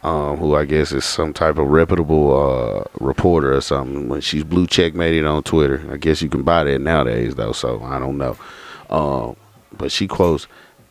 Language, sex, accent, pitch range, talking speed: English, male, American, 75-90 Hz, 195 wpm